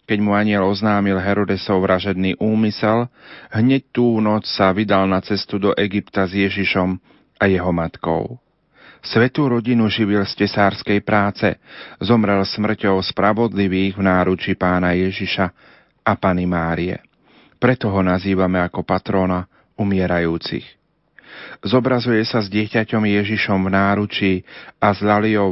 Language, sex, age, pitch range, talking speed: Slovak, male, 40-59, 95-110 Hz, 120 wpm